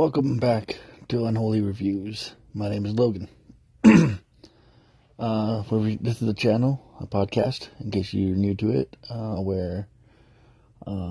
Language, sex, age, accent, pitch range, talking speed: English, male, 30-49, American, 95-115 Hz, 140 wpm